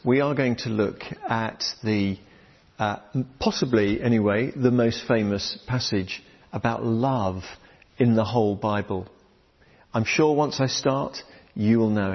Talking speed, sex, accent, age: 140 wpm, male, British, 50-69